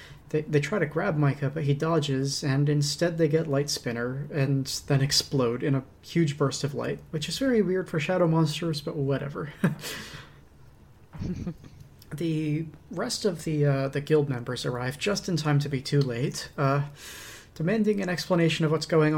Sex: male